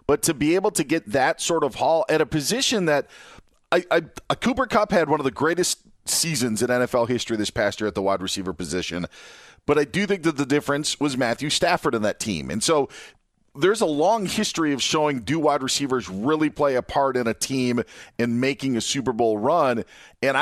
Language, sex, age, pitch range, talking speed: English, male, 40-59, 120-155 Hz, 215 wpm